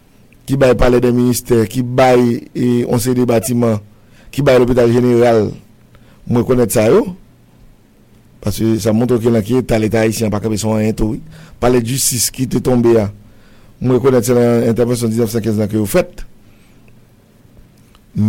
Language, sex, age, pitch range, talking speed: English, male, 50-69, 115-130 Hz, 165 wpm